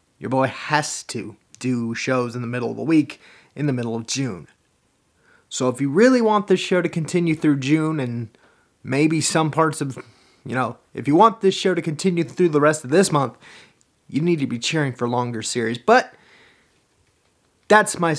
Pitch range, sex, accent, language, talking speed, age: 140-195 Hz, male, American, English, 195 wpm, 30-49